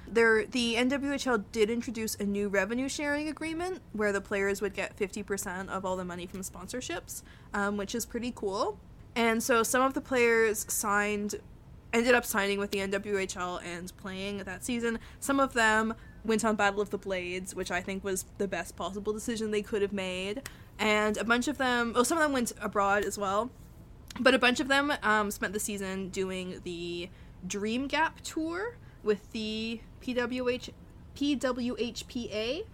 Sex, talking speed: female, 175 wpm